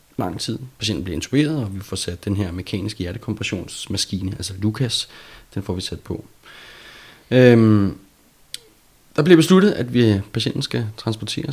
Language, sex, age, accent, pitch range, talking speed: Danish, male, 30-49, native, 95-120 Hz, 150 wpm